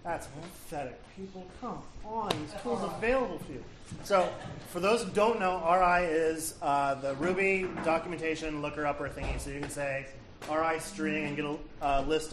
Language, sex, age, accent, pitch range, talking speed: English, male, 30-49, American, 135-165 Hz, 180 wpm